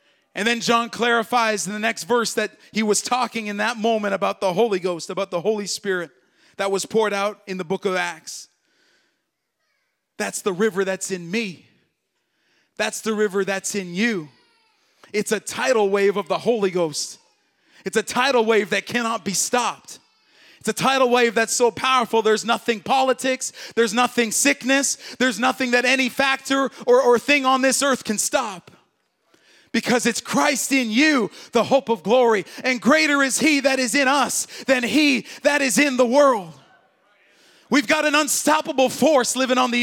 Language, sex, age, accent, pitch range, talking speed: English, male, 30-49, American, 215-275 Hz, 180 wpm